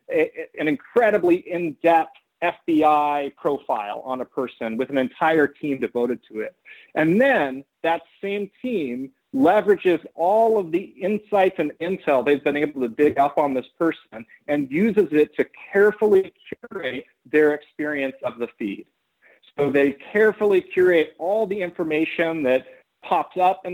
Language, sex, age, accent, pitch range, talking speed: English, male, 40-59, American, 145-185 Hz, 145 wpm